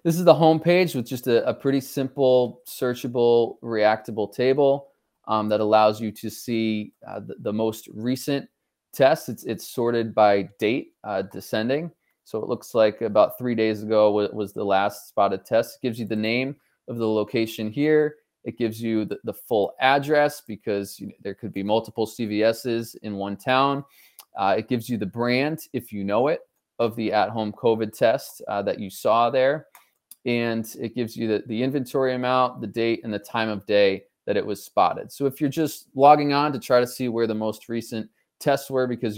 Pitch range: 110-135 Hz